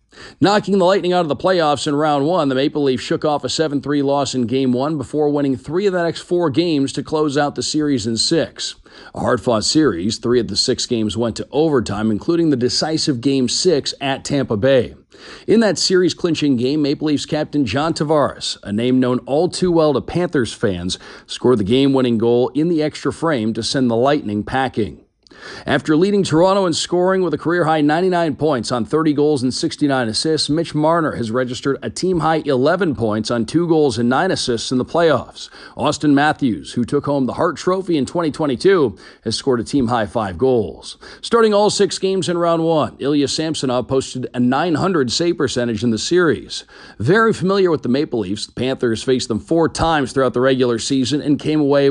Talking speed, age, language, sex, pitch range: 200 wpm, 40-59, English, male, 125-160 Hz